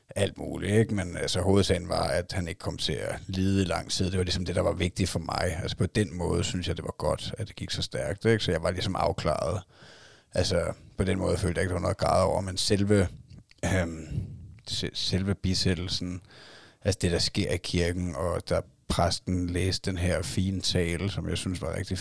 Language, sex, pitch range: Danish, male, 85-100 Hz